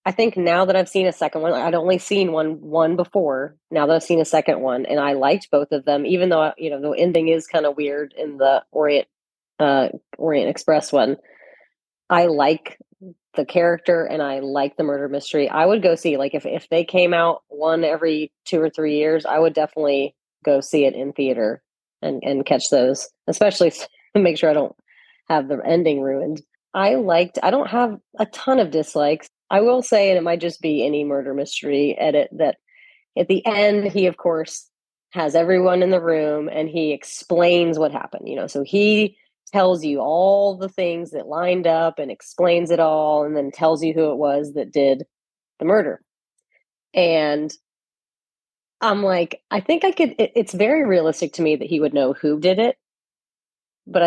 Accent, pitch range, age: American, 150-185 Hz, 30-49